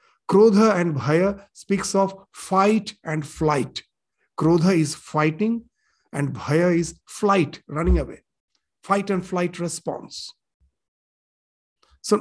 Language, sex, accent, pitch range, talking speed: English, male, Indian, 160-205 Hz, 110 wpm